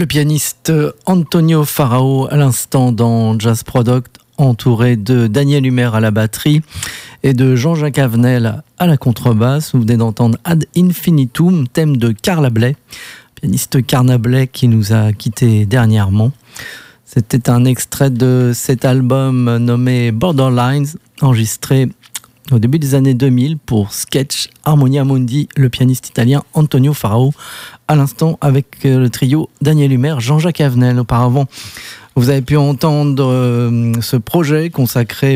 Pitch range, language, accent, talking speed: 120-145 Hz, French, French, 135 wpm